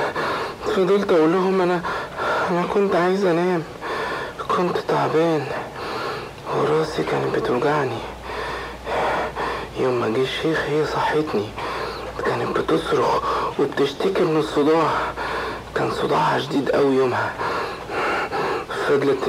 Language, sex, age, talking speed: Arabic, male, 60-79, 90 wpm